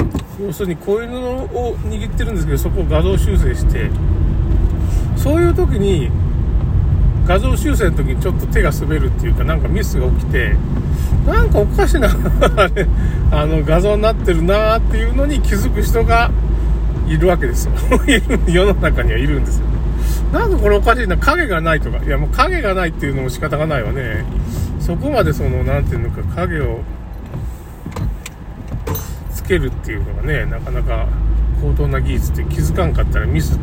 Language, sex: Japanese, male